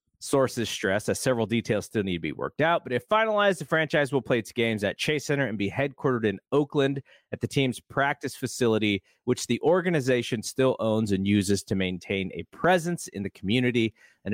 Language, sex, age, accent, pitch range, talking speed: English, male, 30-49, American, 105-140 Hz, 200 wpm